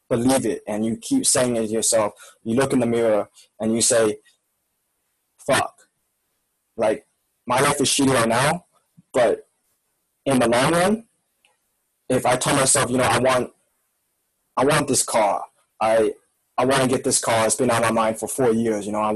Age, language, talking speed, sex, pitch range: 20-39, English, 190 wpm, male, 110-130 Hz